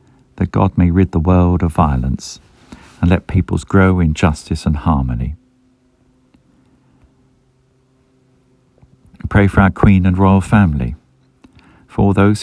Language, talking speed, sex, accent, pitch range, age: English, 120 wpm, male, British, 85-115 Hz, 50-69